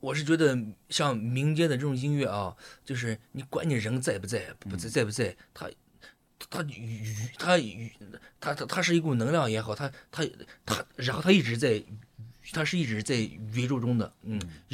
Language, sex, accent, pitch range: Chinese, male, native, 110-140 Hz